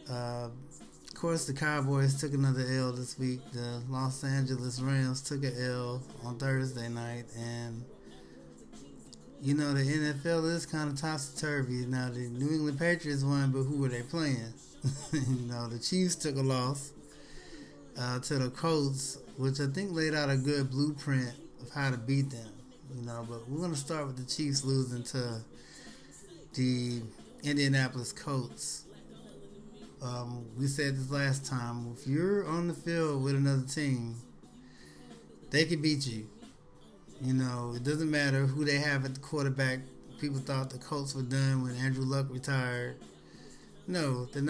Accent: American